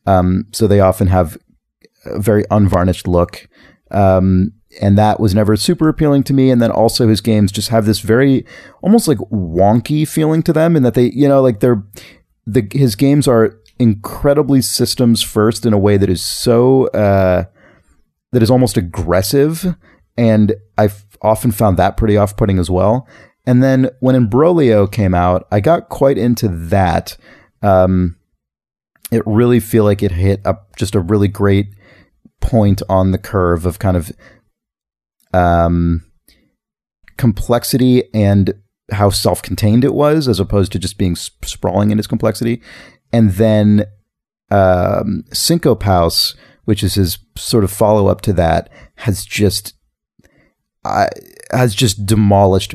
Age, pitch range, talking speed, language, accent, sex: 30-49, 95-120 Hz, 150 wpm, English, American, male